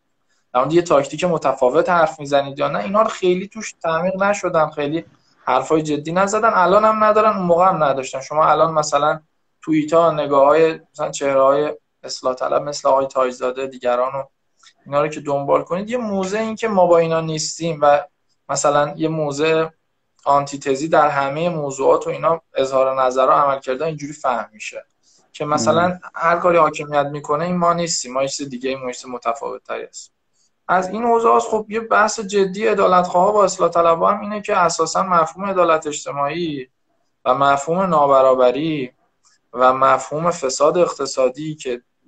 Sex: male